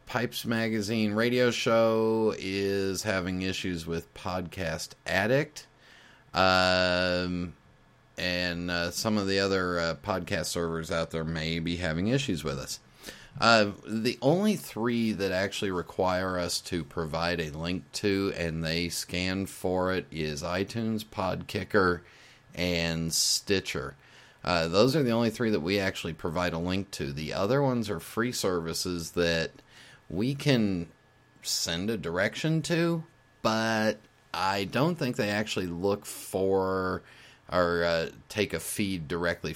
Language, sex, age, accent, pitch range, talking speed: English, male, 40-59, American, 85-105 Hz, 140 wpm